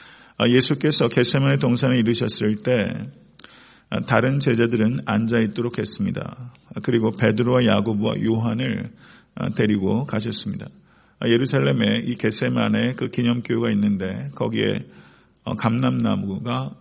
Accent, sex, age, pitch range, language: native, male, 50-69, 110-130 Hz, Korean